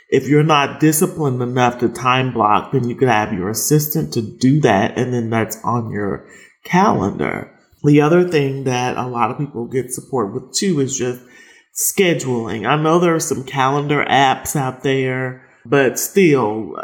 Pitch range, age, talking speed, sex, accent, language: 125-150 Hz, 30-49, 175 wpm, male, American, English